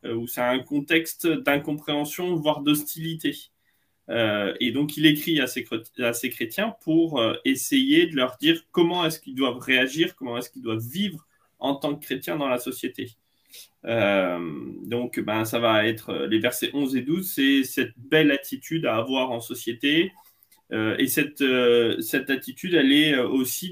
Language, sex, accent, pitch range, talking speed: French, male, French, 120-170 Hz, 170 wpm